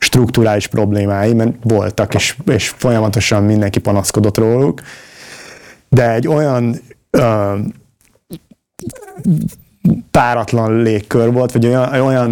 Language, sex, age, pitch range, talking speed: Hungarian, male, 30-49, 105-120 Hz, 95 wpm